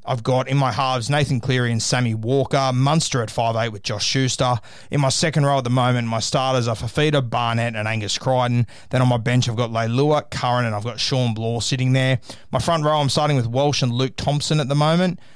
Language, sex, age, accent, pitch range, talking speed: English, male, 20-39, Australian, 115-135 Hz, 230 wpm